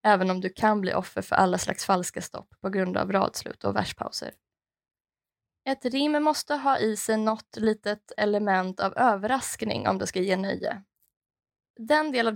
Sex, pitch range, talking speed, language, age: female, 195-230 Hz, 175 wpm, Swedish, 20-39